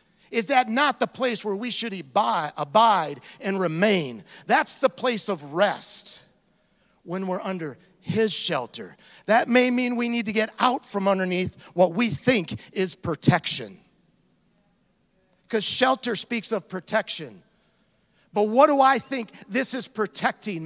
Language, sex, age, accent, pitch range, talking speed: English, male, 50-69, American, 205-255 Hz, 145 wpm